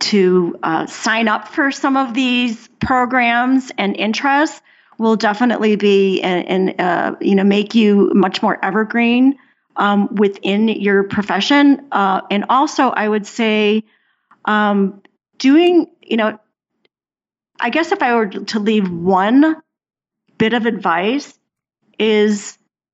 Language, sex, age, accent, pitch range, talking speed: English, female, 40-59, American, 200-255 Hz, 130 wpm